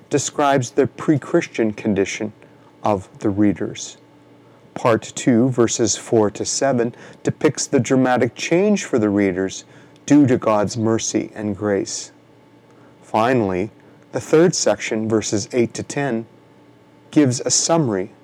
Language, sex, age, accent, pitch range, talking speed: English, male, 30-49, American, 110-145 Hz, 120 wpm